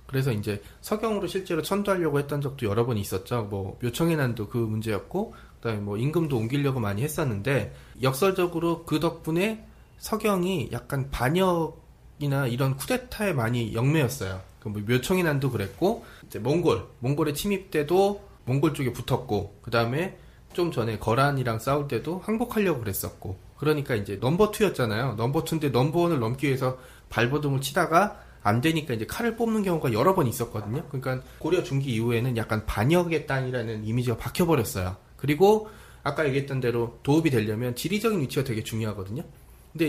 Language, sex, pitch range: Korean, male, 115-165 Hz